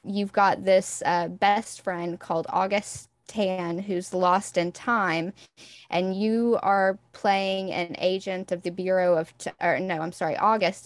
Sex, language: female, English